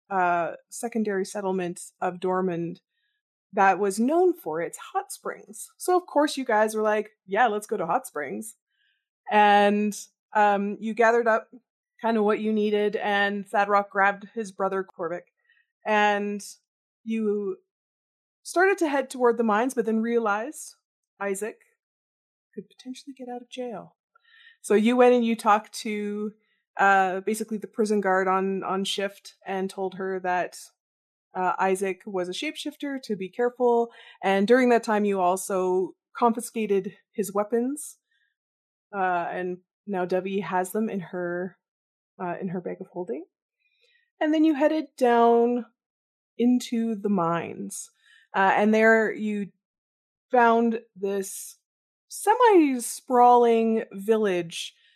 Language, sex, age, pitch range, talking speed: English, female, 20-39, 195-245 Hz, 135 wpm